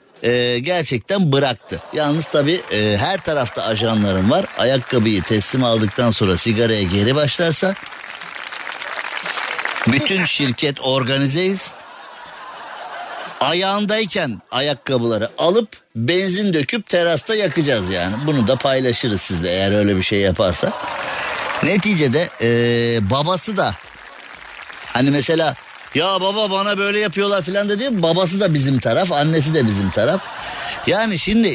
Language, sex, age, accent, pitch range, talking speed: Turkish, male, 50-69, native, 120-185 Hz, 115 wpm